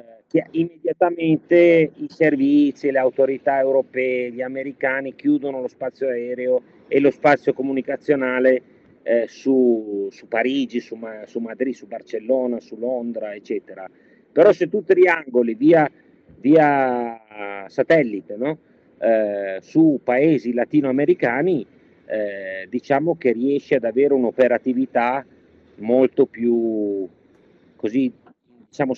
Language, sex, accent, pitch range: Italian, male, native, 120-155 Hz